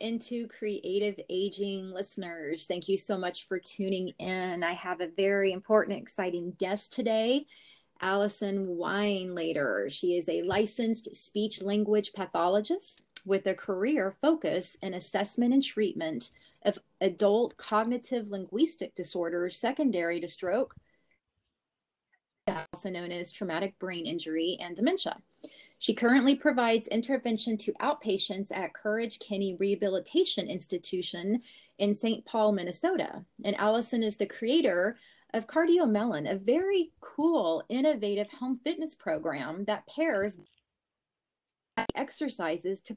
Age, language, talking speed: 30-49, English, 115 wpm